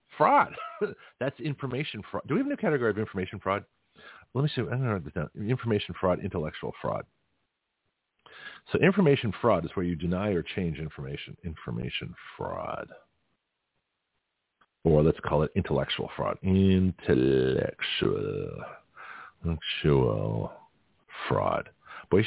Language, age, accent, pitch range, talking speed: English, 40-59, American, 85-120 Hz, 130 wpm